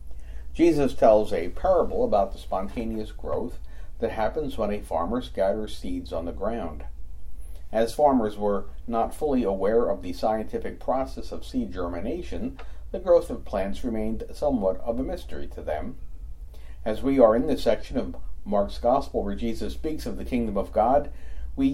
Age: 50-69